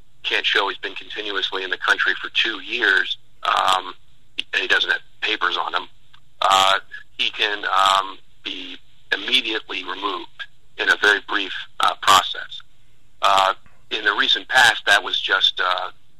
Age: 40-59